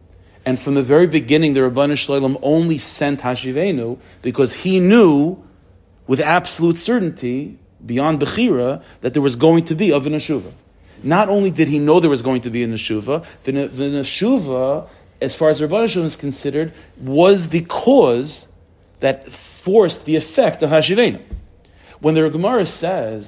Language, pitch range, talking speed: English, 115-160 Hz, 155 wpm